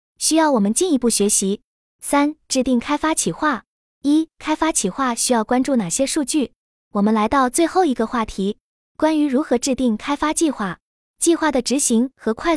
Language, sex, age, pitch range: Chinese, female, 20-39, 225-300 Hz